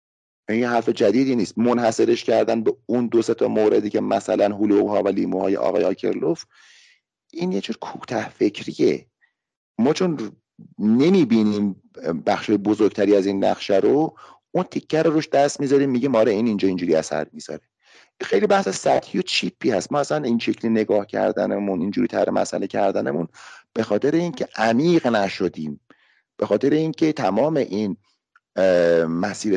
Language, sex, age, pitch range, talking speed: Persian, male, 40-59, 100-150 Hz, 145 wpm